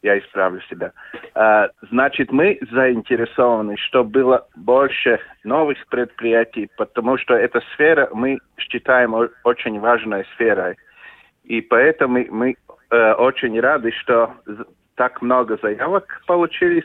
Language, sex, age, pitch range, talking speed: Russian, male, 40-59, 110-185 Hz, 105 wpm